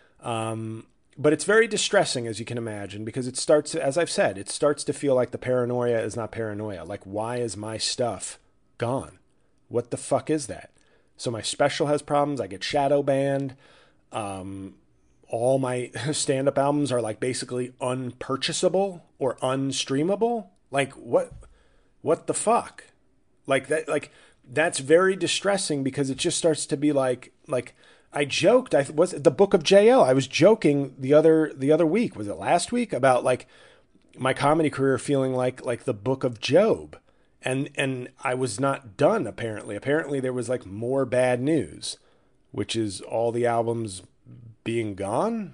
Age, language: 30-49, English